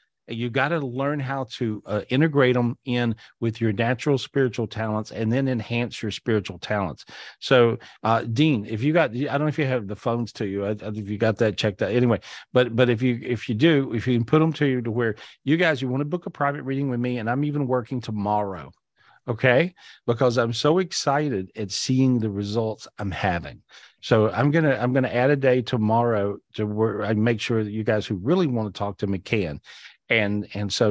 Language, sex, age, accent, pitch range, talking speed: English, male, 40-59, American, 110-130 Hz, 225 wpm